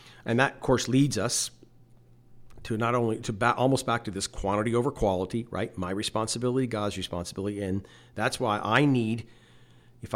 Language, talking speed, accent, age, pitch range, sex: English, 165 wpm, American, 50-69, 105-125 Hz, male